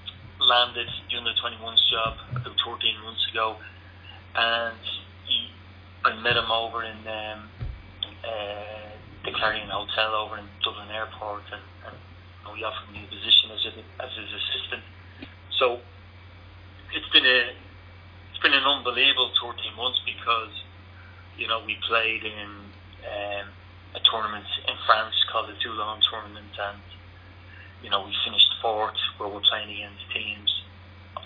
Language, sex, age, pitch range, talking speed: English, male, 30-49, 95-110 Hz, 145 wpm